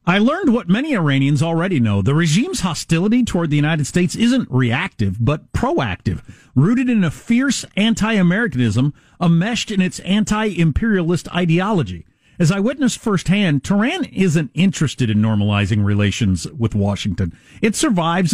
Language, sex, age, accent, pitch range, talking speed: English, male, 50-69, American, 125-195 Hz, 135 wpm